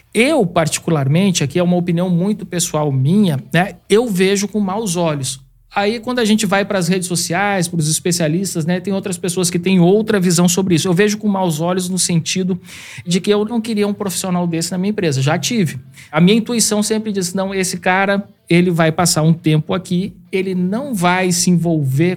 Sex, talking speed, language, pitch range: male, 205 wpm, Portuguese, 160-200 Hz